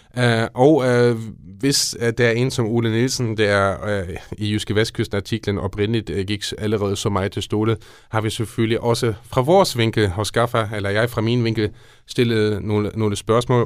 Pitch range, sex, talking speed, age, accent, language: 100-115 Hz, male, 185 wpm, 30-49, native, Danish